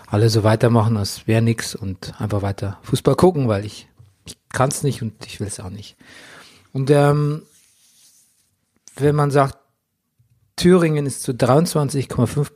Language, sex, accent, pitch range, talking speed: German, male, German, 110-140 Hz, 155 wpm